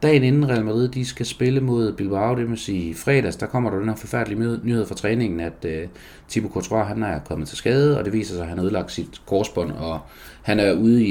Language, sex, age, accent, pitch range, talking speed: Danish, male, 30-49, native, 80-105 Hz, 240 wpm